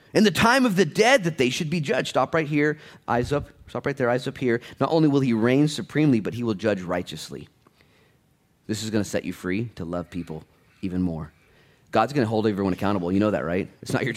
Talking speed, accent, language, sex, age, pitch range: 245 wpm, American, English, male, 30-49, 100-145 Hz